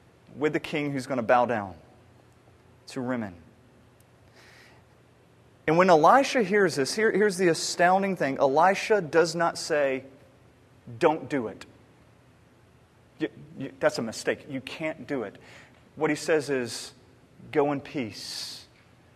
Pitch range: 145-215 Hz